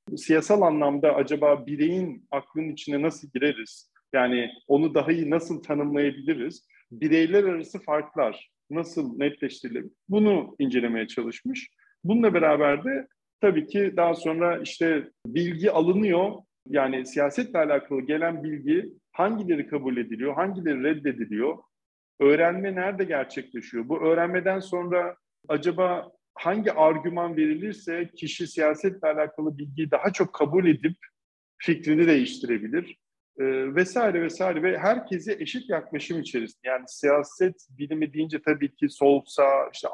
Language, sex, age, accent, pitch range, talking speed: Turkish, male, 50-69, native, 145-195 Hz, 120 wpm